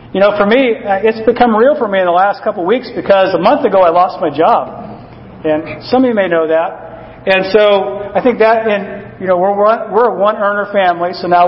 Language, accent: English, American